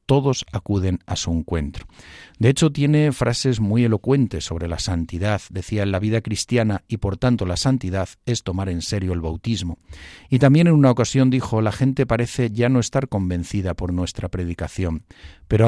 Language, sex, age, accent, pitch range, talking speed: Spanish, male, 50-69, Spanish, 95-120 Hz, 180 wpm